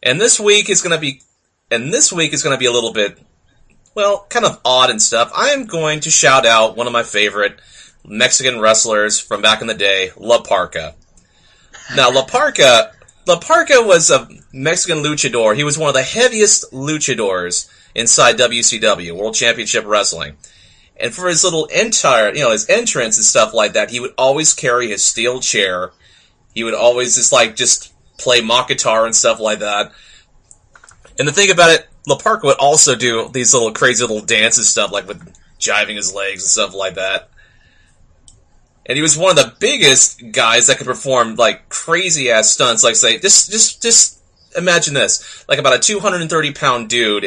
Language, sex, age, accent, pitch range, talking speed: English, male, 30-49, American, 110-170 Hz, 190 wpm